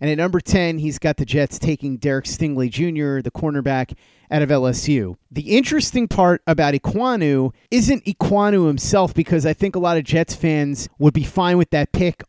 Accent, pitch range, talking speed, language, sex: American, 140-175 Hz, 190 wpm, English, male